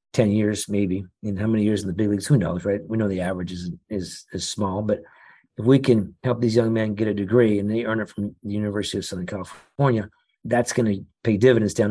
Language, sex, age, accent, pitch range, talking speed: English, male, 40-59, American, 105-120 Hz, 245 wpm